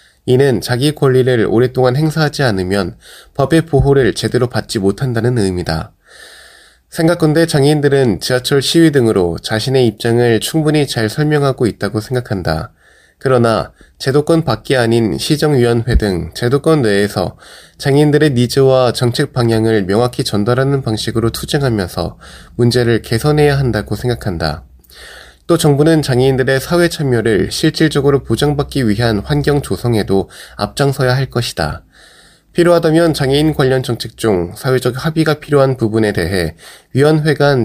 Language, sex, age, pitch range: Korean, male, 20-39, 110-145 Hz